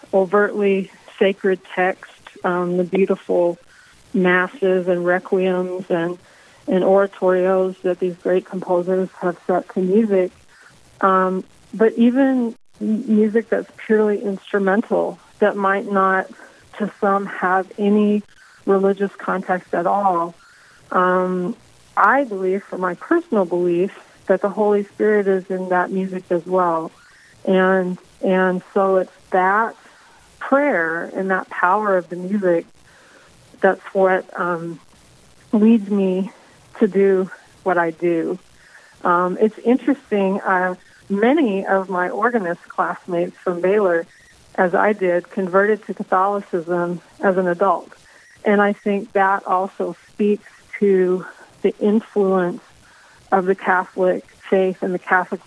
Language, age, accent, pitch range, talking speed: English, 40-59, American, 180-205 Hz, 125 wpm